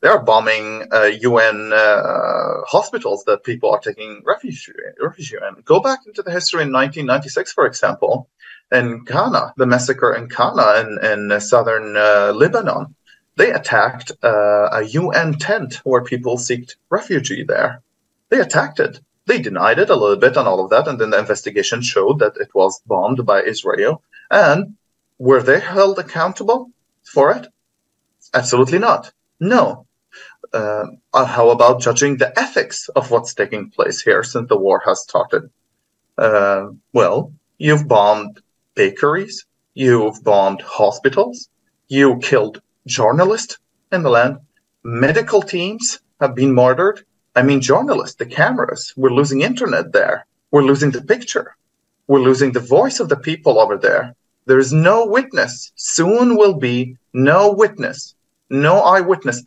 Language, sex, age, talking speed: English, male, 30-49, 150 wpm